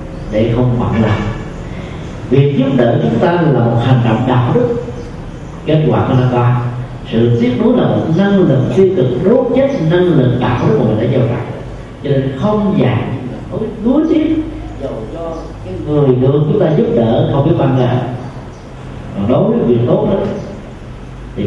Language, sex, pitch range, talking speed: Vietnamese, male, 120-155 Hz, 185 wpm